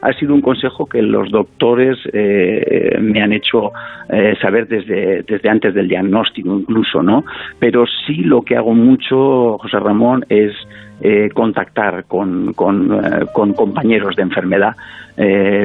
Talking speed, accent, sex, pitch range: 150 wpm, Spanish, male, 105-125 Hz